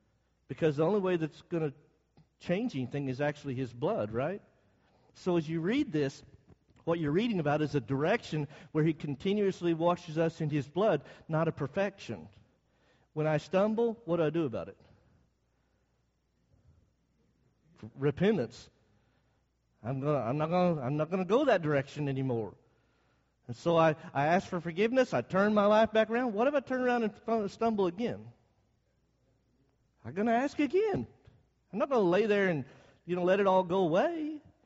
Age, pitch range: 50-69, 135-210 Hz